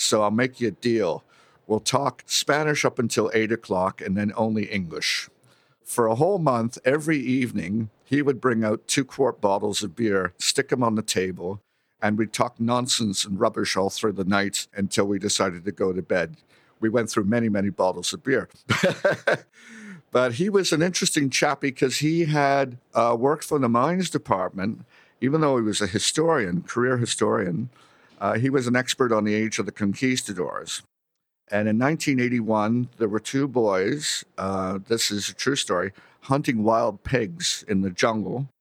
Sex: male